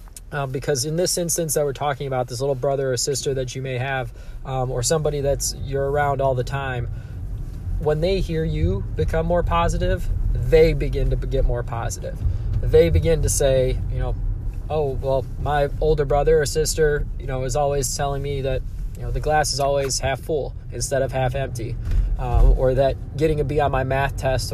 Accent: American